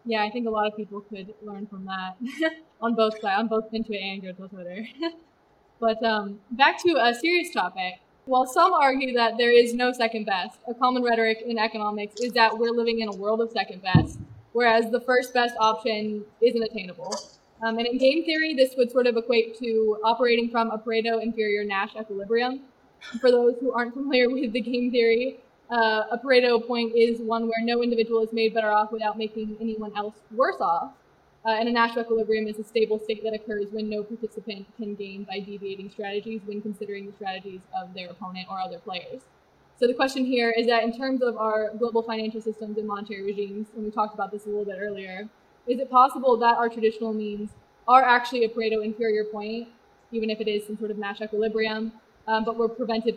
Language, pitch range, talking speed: English, 210-240 Hz, 205 wpm